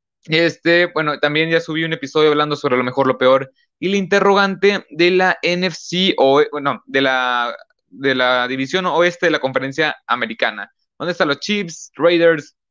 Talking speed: 170 wpm